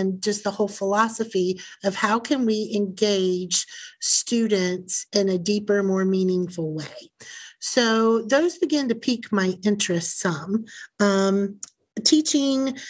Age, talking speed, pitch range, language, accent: 40-59, 125 wpm, 200-255 Hz, English, American